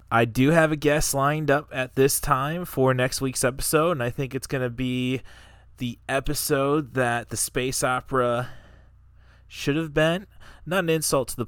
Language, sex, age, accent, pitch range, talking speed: English, male, 20-39, American, 110-140 Hz, 185 wpm